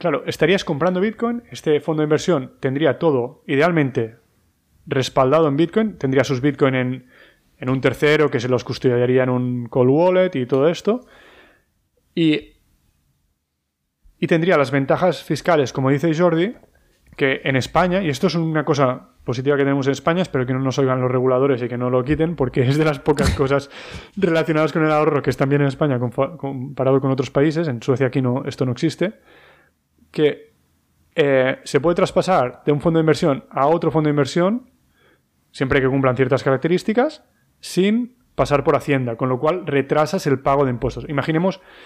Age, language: 30-49, Spanish